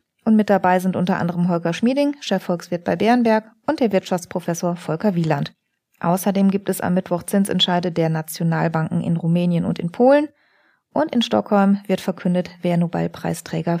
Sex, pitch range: female, 175-220 Hz